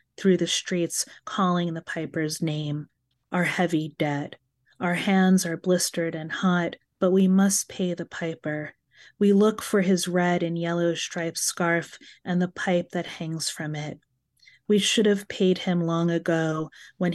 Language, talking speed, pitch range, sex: English, 160 wpm, 160-180 Hz, female